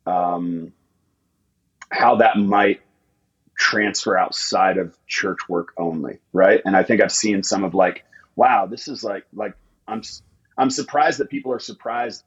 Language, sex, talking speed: English, male, 150 wpm